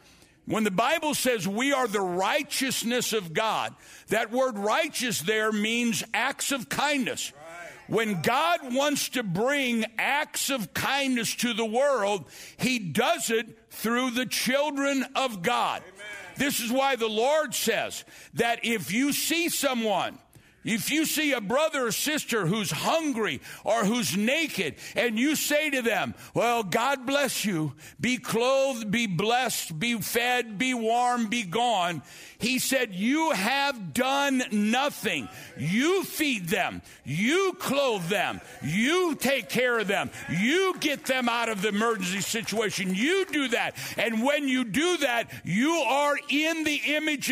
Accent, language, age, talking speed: American, English, 60-79, 150 wpm